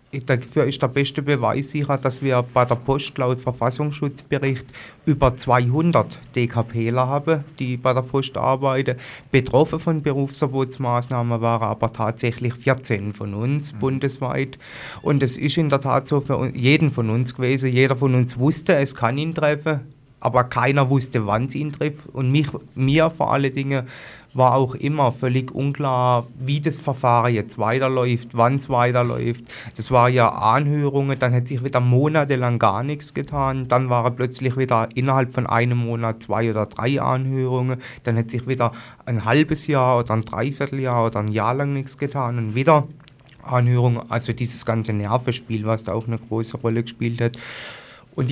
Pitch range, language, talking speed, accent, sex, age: 120-140 Hz, German, 165 wpm, German, male, 30-49